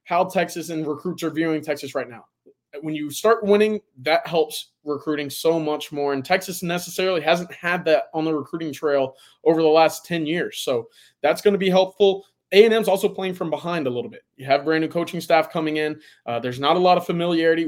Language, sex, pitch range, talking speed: English, male, 150-180 Hz, 220 wpm